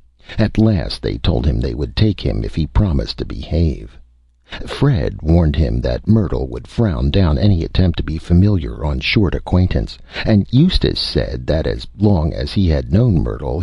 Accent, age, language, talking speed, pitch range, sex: American, 60-79, English, 180 wpm, 70-100 Hz, male